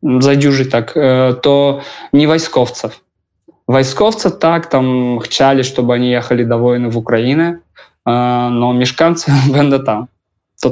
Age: 20-39